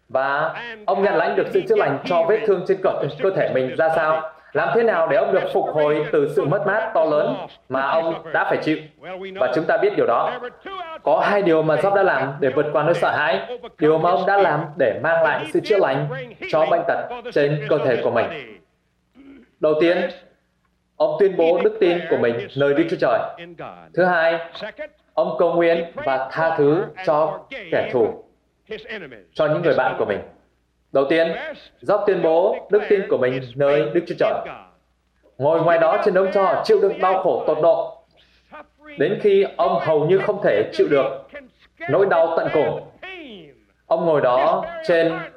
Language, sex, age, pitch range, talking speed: Vietnamese, male, 20-39, 155-230 Hz, 195 wpm